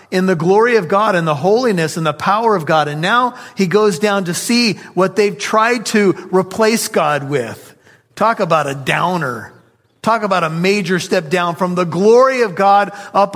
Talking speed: 195 wpm